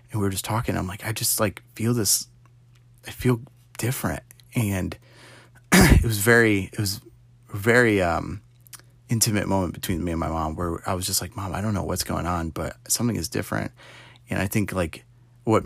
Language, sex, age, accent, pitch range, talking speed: English, male, 30-49, American, 95-120 Hz, 195 wpm